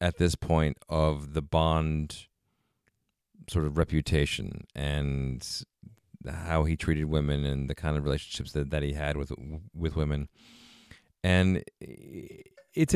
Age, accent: 40-59, American